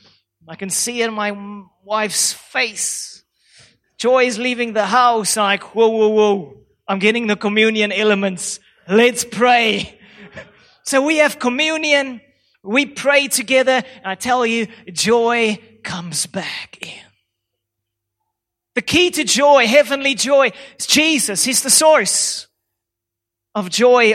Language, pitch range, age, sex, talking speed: English, 210-270 Hz, 30-49, male, 130 wpm